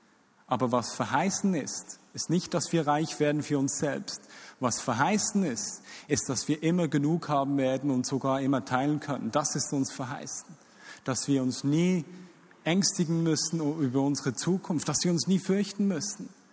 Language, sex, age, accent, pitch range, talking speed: German, male, 40-59, German, 130-175 Hz, 170 wpm